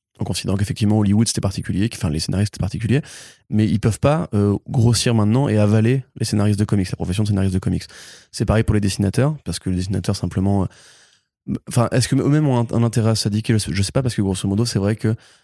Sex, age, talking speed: male, 20-39, 235 wpm